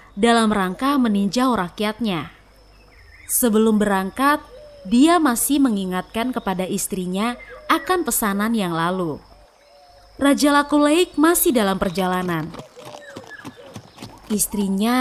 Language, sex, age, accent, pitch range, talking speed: Indonesian, female, 20-39, native, 195-275 Hz, 85 wpm